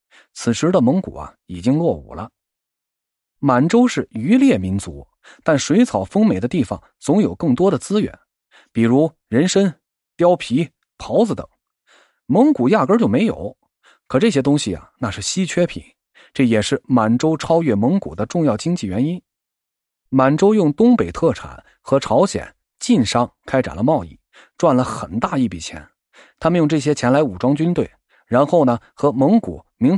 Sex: male